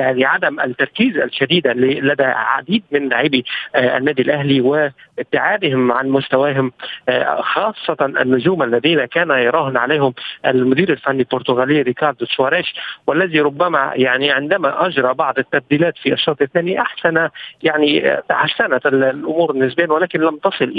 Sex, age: male, 50-69